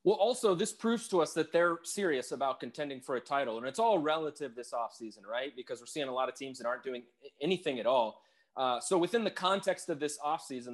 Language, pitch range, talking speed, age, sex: English, 130-170 Hz, 235 wpm, 20-39, male